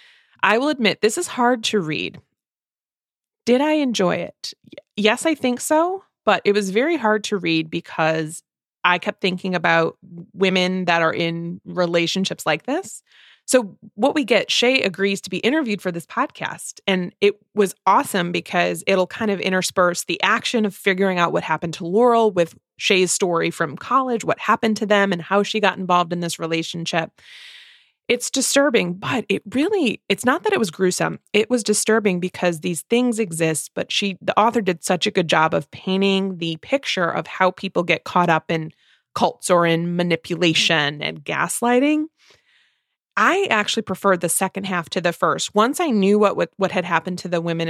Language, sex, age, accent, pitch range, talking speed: English, female, 20-39, American, 170-225 Hz, 180 wpm